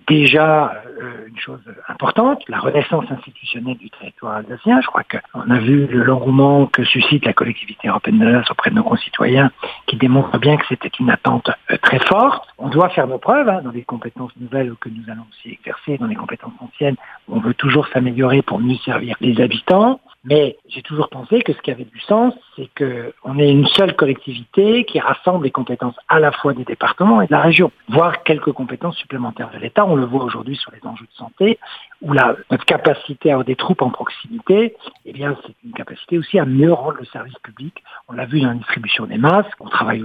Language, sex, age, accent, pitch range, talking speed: French, male, 60-79, French, 125-170 Hz, 210 wpm